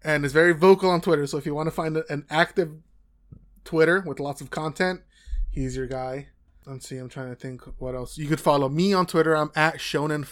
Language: English